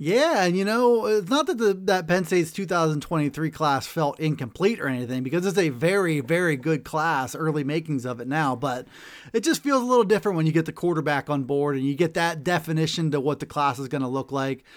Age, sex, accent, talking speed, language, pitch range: 30-49, male, American, 230 wpm, English, 155-200 Hz